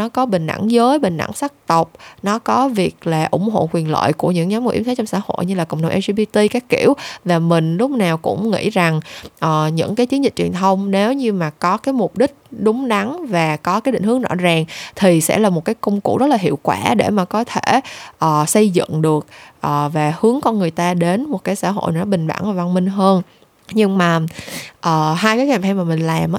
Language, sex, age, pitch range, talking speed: Vietnamese, female, 20-39, 165-220 Hz, 250 wpm